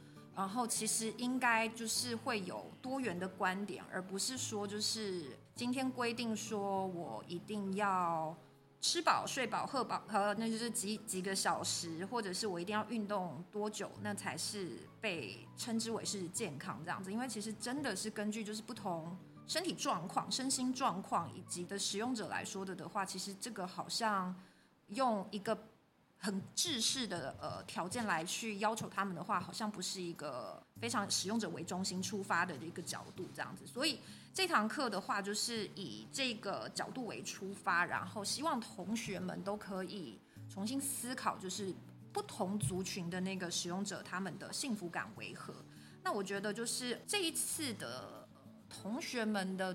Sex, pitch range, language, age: female, 185-225 Hz, Chinese, 20-39